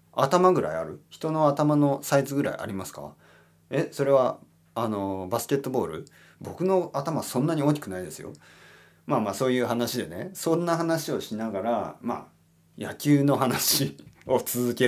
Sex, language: male, Japanese